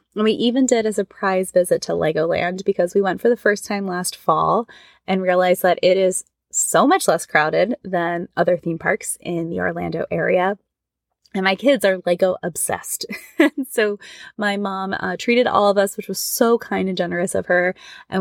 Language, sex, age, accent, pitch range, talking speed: English, female, 20-39, American, 180-220 Hz, 190 wpm